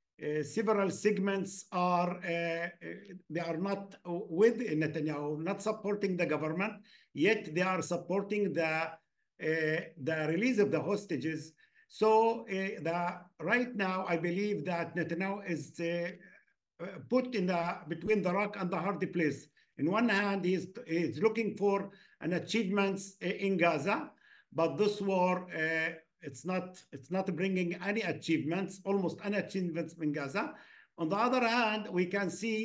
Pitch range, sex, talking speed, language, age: 165-200 Hz, male, 155 wpm, English, 50-69